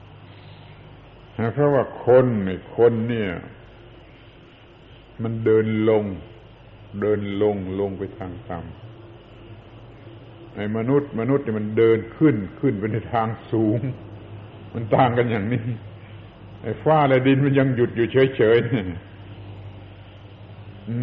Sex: male